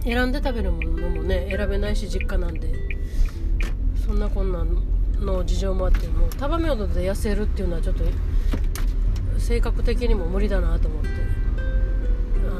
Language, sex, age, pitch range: Japanese, female, 30-49, 80-105 Hz